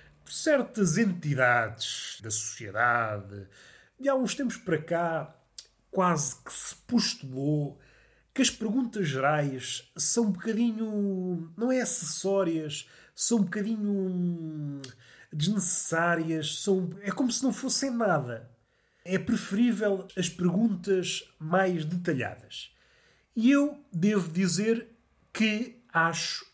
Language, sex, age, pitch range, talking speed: Portuguese, male, 30-49, 135-210 Hz, 105 wpm